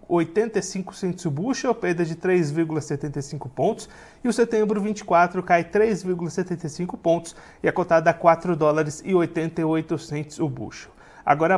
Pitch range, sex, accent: 160-200 Hz, male, Brazilian